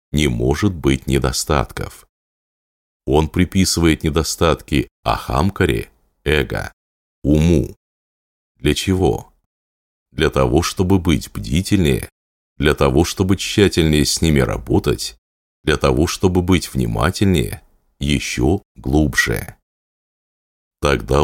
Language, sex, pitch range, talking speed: Russian, male, 70-90 Hz, 90 wpm